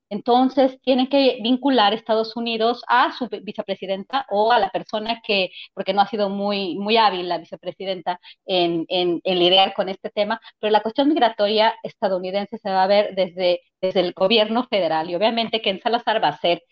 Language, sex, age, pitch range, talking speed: Spanish, female, 30-49, 190-230 Hz, 185 wpm